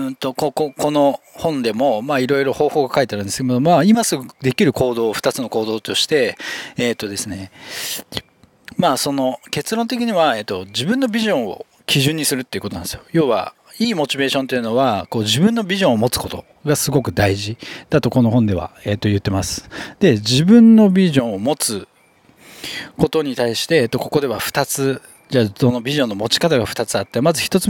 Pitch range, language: 115-160 Hz, Japanese